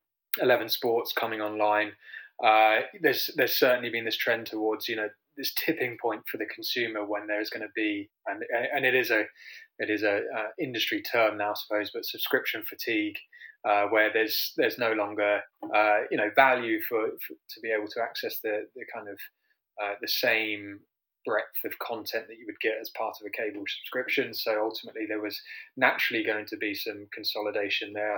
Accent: British